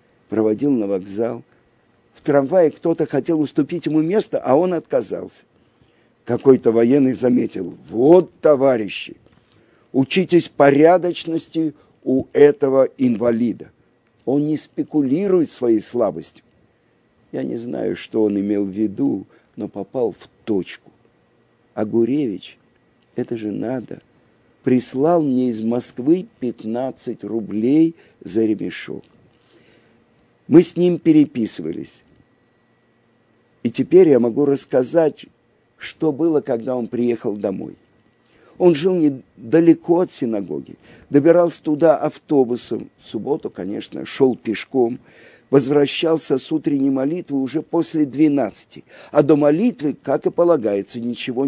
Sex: male